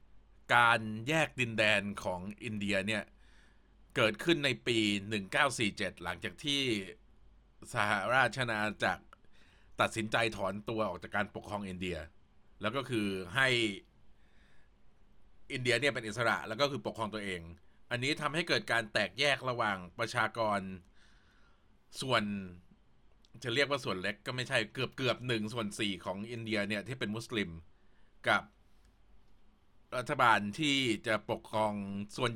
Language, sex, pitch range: Thai, male, 100-125 Hz